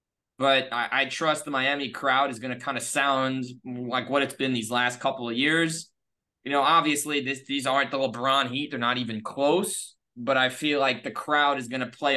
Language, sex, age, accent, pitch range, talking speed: English, male, 20-39, American, 120-150 Hz, 220 wpm